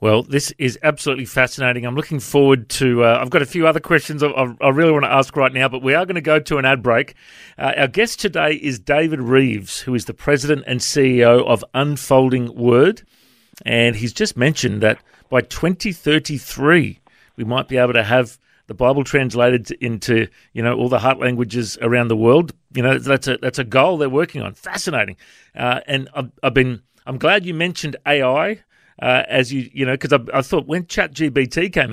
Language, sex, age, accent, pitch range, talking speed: English, male, 40-59, Australian, 125-160 Hz, 205 wpm